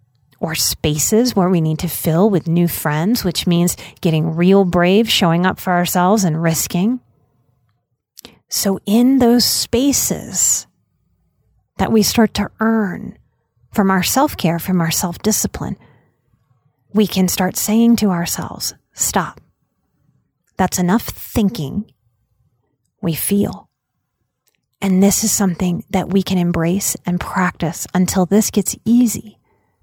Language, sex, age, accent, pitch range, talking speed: English, female, 30-49, American, 165-210 Hz, 125 wpm